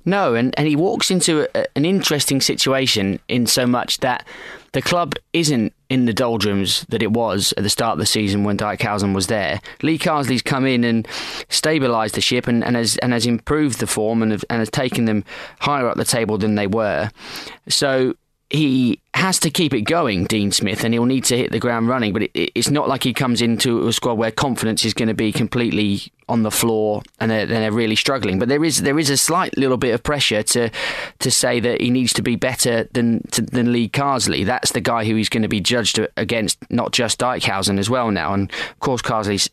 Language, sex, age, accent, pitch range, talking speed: English, male, 20-39, British, 105-130 Hz, 220 wpm